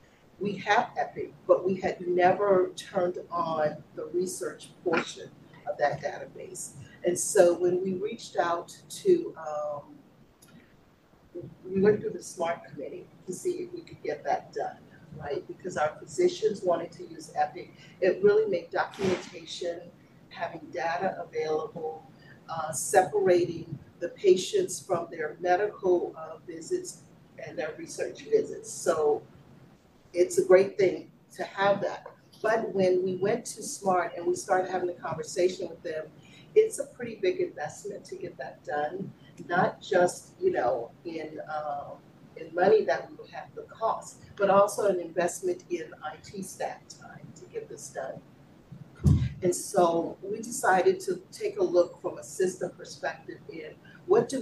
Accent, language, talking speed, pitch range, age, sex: American, English, 150 wpm, 165-210 Hz, 40-59, female